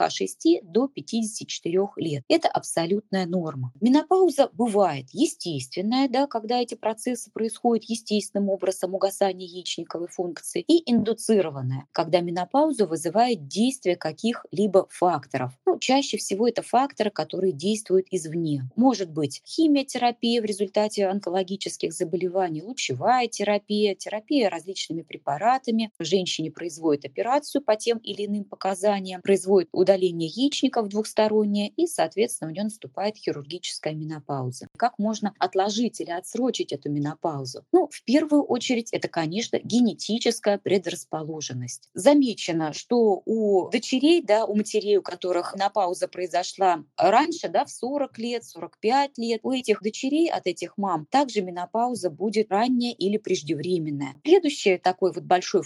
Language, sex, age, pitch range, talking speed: Russian, female, 20-39, 180-235 Hz, 125 wpm